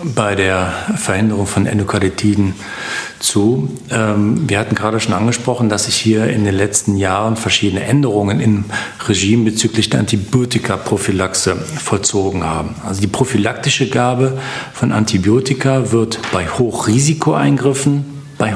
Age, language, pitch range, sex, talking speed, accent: 40-59, German, 105-120 Hz, male, 120 wpm, German